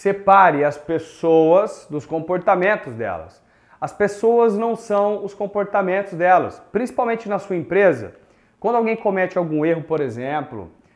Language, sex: Portuguese, male